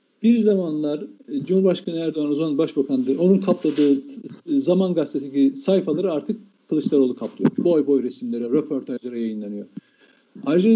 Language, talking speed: Turkish, 115 wpm